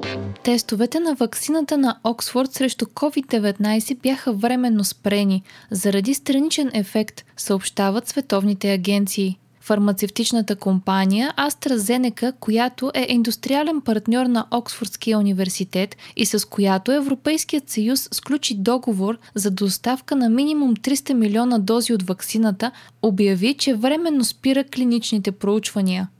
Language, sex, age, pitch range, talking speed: Bulgarian, female, 20-39, 205-255 Hz, 110 wpm